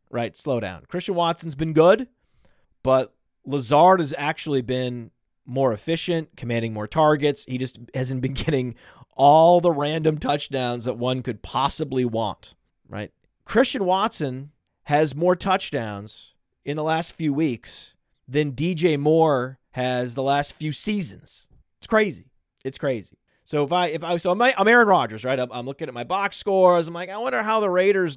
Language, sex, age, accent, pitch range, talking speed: English, male, 30-49, American, 130-185 Hz, 165 wpm